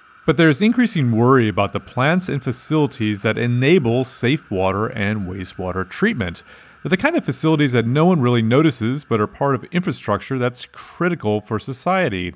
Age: 40-59